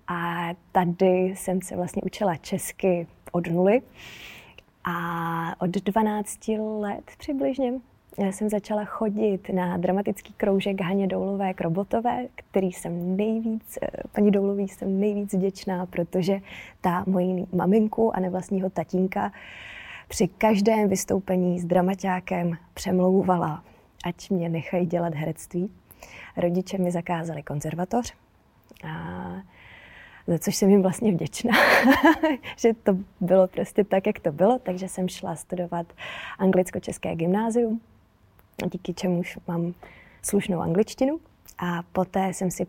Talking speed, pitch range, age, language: 120 wpm, 175-205 Hz, 20-39, Czech